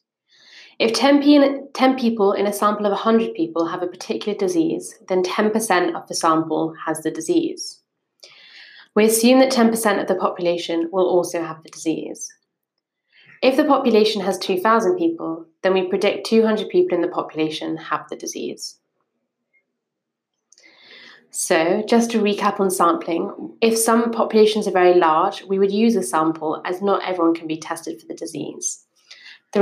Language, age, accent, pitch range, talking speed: English, 20-39, British, 175-230 Hz, 160 wpm